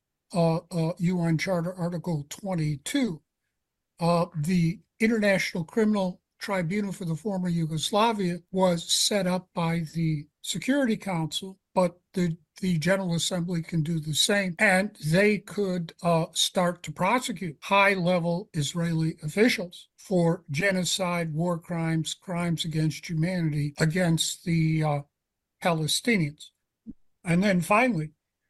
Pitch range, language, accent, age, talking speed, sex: 160-195 Hz, English, American, 60-79, 115 wpm, male